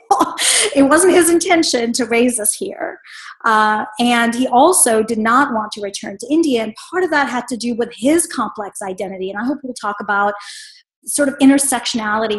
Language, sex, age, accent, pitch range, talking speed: English, female, 30-49, American, 215-280 Hz, 190 wpm